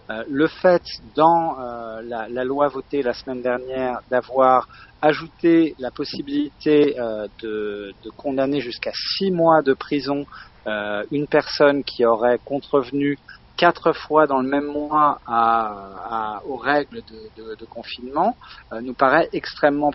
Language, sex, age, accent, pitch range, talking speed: French, male, 40-59, French, 115-145 Hz, 140 wpm